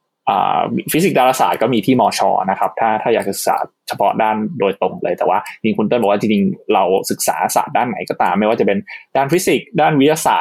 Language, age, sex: Thai, 20-39, male